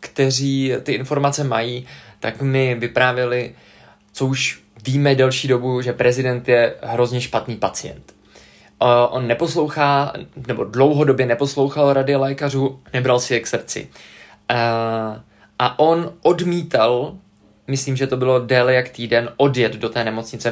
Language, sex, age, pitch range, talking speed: Czech, male, 20-39, 125-145 Hz, 135 wpm